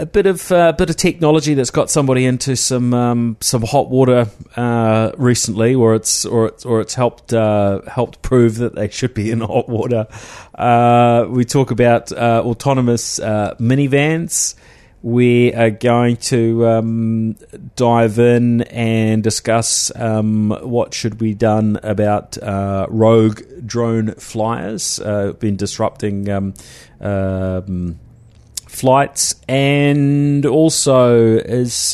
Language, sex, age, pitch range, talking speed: English, male, 30-49, 105-125 Hz, 135 wpm